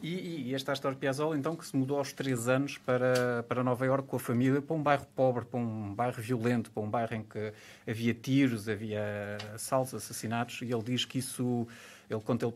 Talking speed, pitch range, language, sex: 220 wpm, 110-135 Hz, Portuguese, male